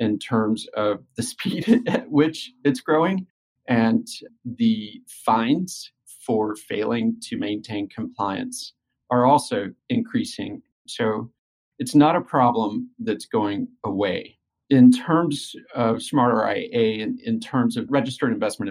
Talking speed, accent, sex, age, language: 120 wpm, American, male, 40-59, English